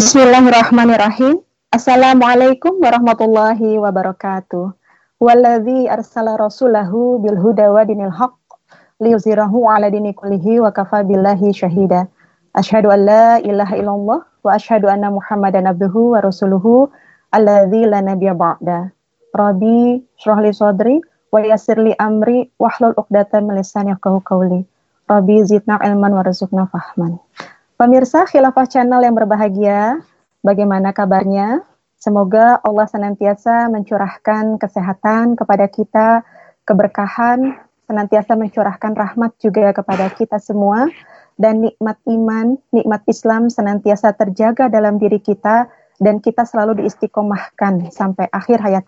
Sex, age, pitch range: female, 20-39, 200-235 Hz